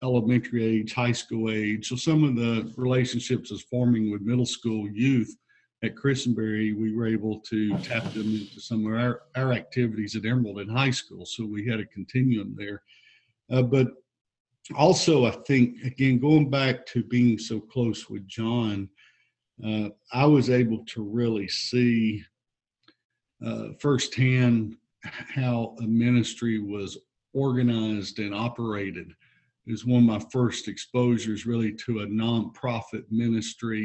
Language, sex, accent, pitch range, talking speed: English, male, American, 110-125 Hz, 145 wpm